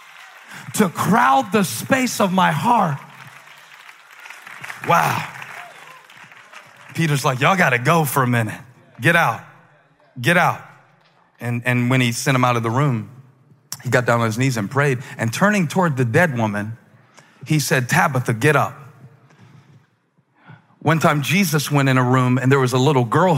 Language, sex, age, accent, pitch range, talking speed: English, male, 40-59, American, 130-180 Hz, 160 wpm